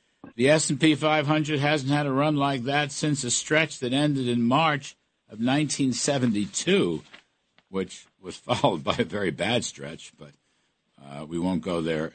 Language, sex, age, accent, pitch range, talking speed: English, male, 60-79, American, 105-145 Hz, 170 wpm